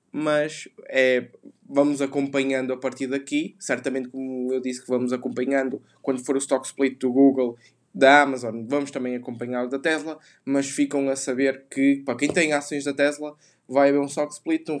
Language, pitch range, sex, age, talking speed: Portuguese, 130-160 Hz, male, 20-39, 185 wpm